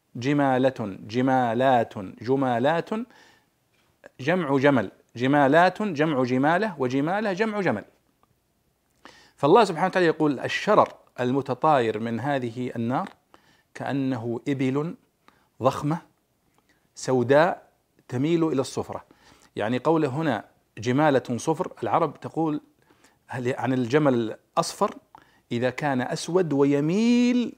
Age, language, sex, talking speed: 50-69, Arabic, male, 90 wpm